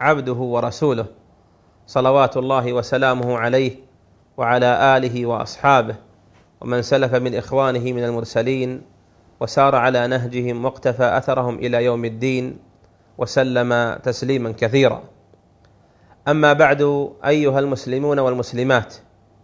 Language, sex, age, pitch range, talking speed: Arabic, male, 40-59, 115-145 Hz, 95 wpm